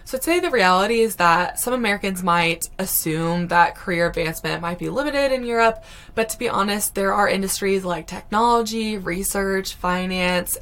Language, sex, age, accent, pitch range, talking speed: English, female, 20-39, American, 170-210 Hz, 170 wpm